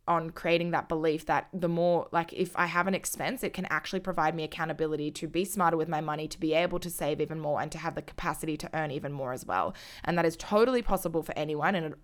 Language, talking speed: English, 260 wpm